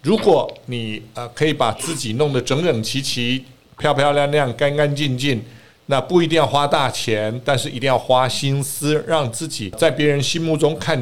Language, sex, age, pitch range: Chinese, male, 50-69, 120-155 Hz